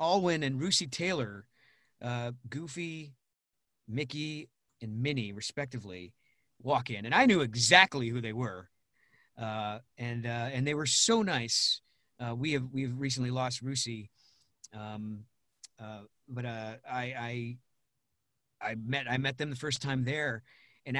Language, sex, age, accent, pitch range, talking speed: English, male, 40-59, American, 125-165 Hz, 145 wpm